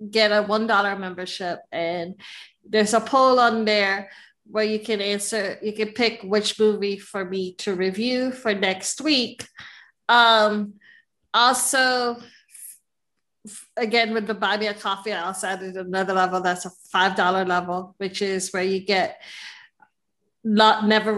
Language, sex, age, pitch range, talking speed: English, female, 30-49, 195-240 Hz, 150 wpm